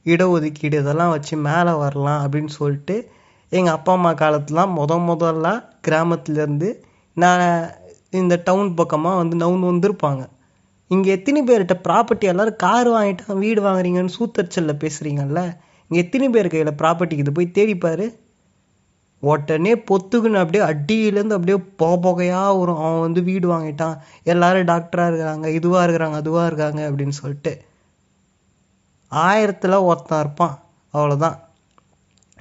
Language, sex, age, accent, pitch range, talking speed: Tamil, male, 20-39, native, 160-195 Hz, 120 wpm